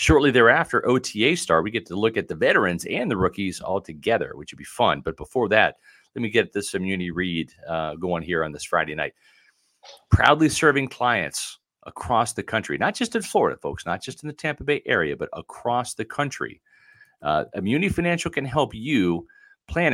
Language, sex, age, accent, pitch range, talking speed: English, male, 40-59, American, 90-135 Hz, 195 wpm